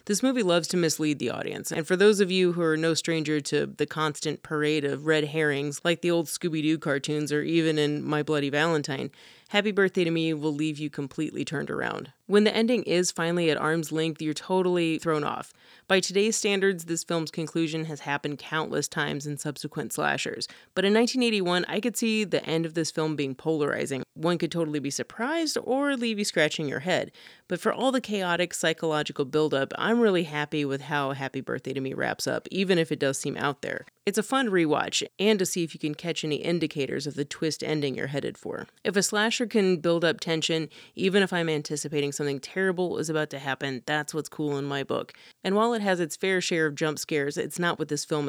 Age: 30-49